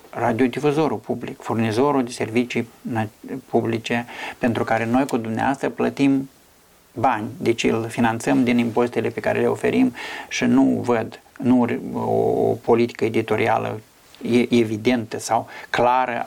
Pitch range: 115-130 Hz